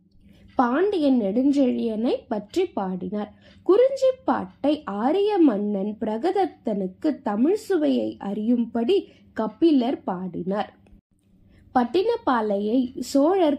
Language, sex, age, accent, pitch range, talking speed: Tamil, female, 20-39, native, 215-295 Hz, 70 wpm